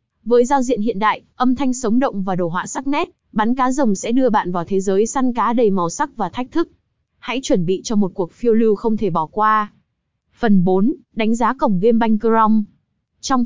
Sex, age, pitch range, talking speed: female, 20-39, 200-250 Hz, 230 wpm